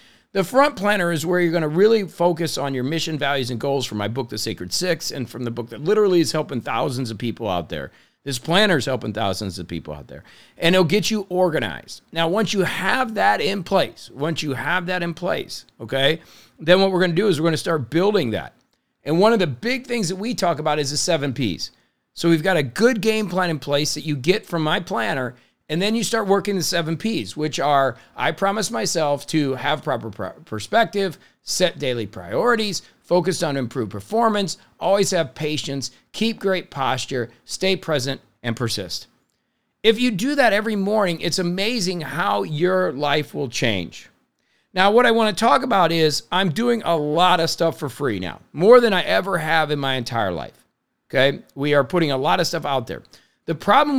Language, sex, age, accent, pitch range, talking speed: English, male, 50-69, American, 135-190 Hz, 210 wpm